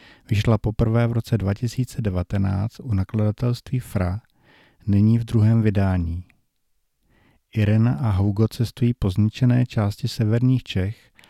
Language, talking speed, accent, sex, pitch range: Czech, 110 wpm, native, male, 105-120 Hz